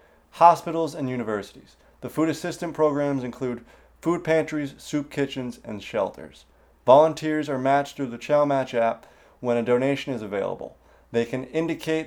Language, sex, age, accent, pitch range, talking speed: English, male, 30-49, American, 115-145 Hz, 150 wpm